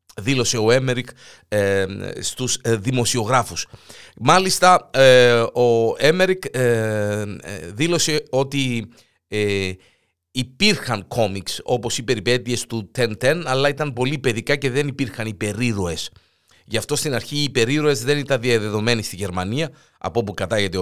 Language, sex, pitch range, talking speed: Greek, male, 110-145 Hz, 110 wpm